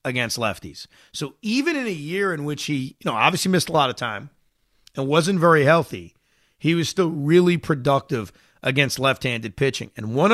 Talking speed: 185 wpm